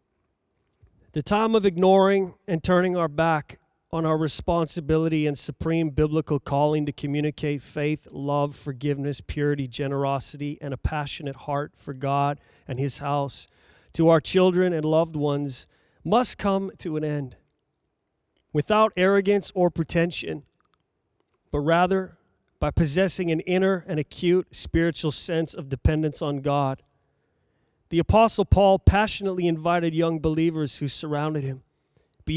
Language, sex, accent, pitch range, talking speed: English, male, American, 145-185 Hz, 130 wpm